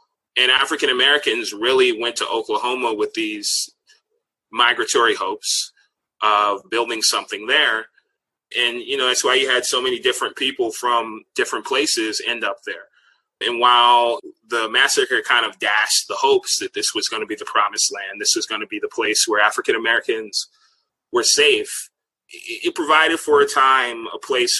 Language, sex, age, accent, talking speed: English, male, 30-49, American, 160 wpm